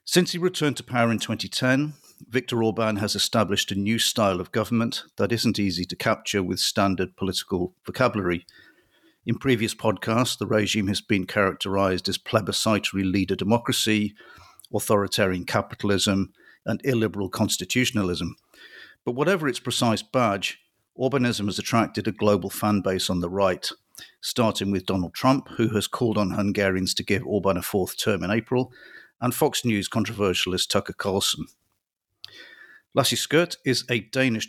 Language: English